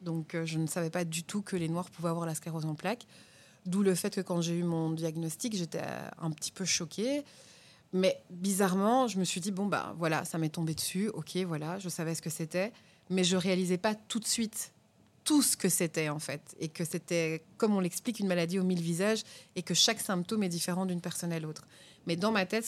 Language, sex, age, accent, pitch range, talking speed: French, female, 20-39, French, 170-195 Hz, 240 wpm